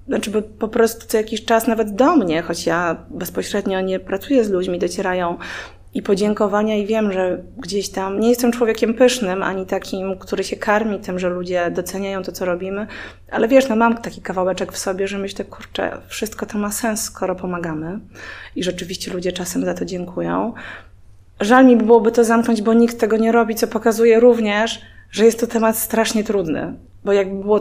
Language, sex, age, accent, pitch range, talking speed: Polish, female, 20-39, native, 180-225 Hz, 190 wpm